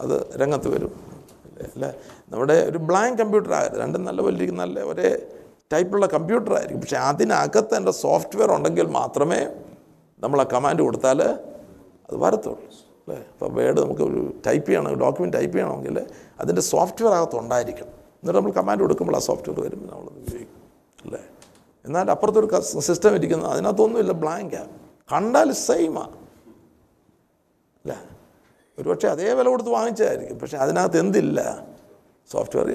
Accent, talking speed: native, 130 wpm